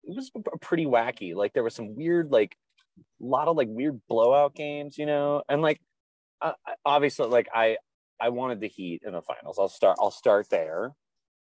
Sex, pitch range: male, 100-155 Hz